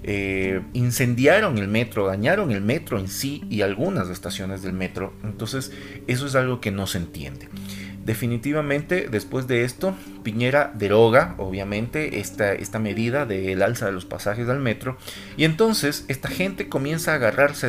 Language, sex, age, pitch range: Spanish, male, 40-59, 100-130 Hz